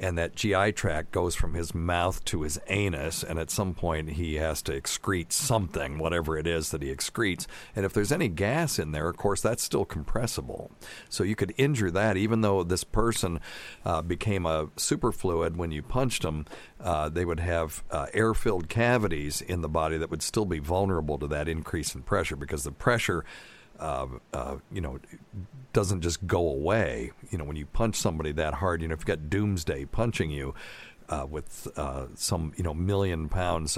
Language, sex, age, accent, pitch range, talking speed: English, male, 50-69, American, 75-100 Hz, 195 wpm